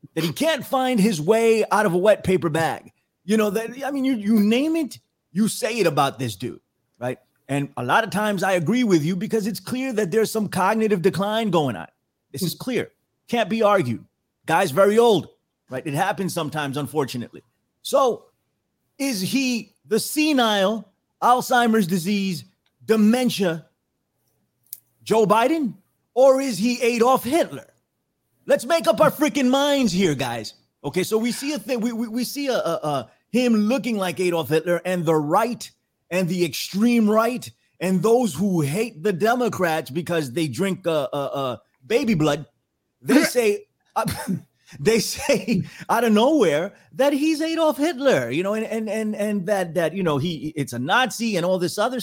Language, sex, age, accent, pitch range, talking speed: English, male, 30-49, American, 165-235 Hz, 175 wpm